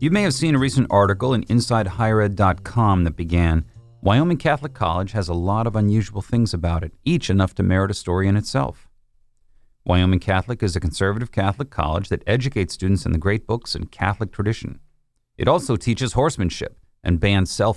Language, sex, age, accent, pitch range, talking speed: English, male, 40-59, American, 90-115 Hz, 180 wpm